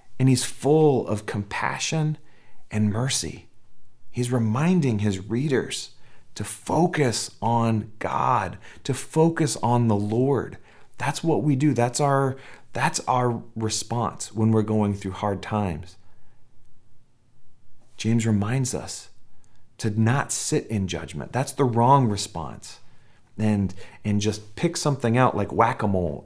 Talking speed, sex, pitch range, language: 125 wpm, male, 105-125 Hz, English